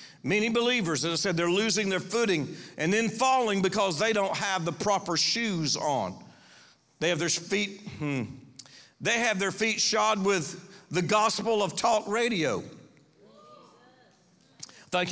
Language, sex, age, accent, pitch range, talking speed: English, male, 50-69, American, 185-240 Hz, 145 wpm